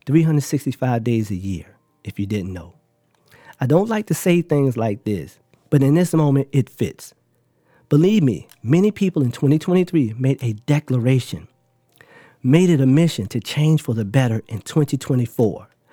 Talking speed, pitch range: 160 wpm, 115-150 Hz